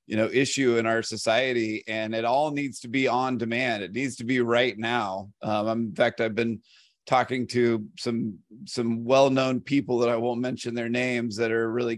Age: 30-49